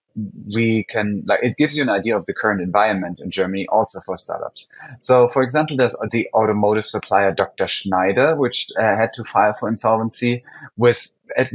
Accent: German